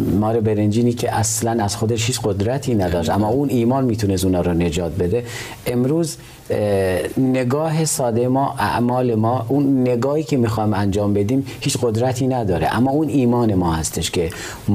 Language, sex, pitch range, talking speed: Persian, male, 100-125 Hz, 155 wpm